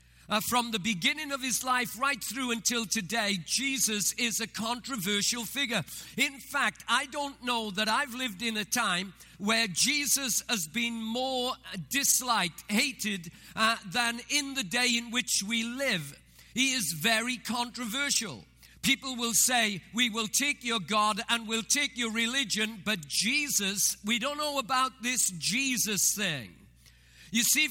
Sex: male